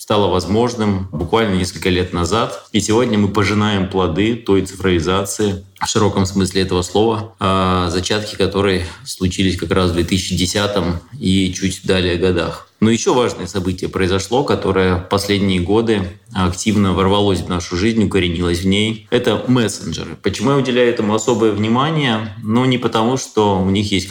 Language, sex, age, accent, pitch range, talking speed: Russian, male, 20-39, native, 95-110 Hz, 150 wpm